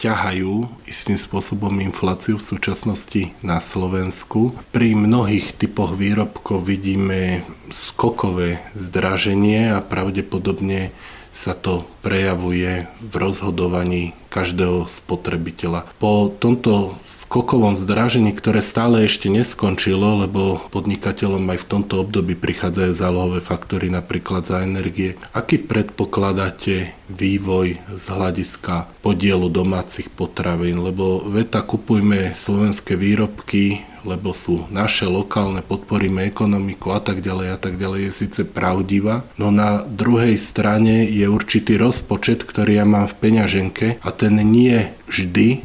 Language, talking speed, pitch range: Slovak, 110 wpm, 95-105 Hz